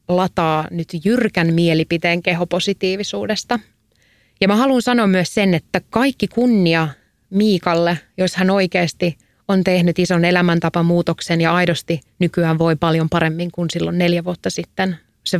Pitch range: 160-185 Hz